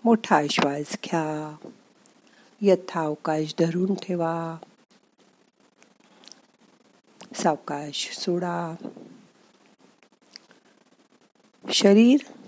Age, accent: 50-69, native